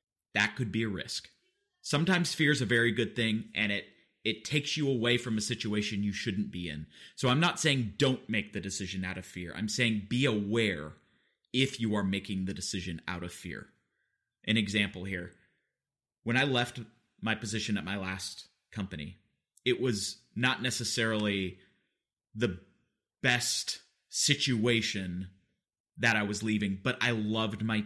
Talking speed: 165 wpm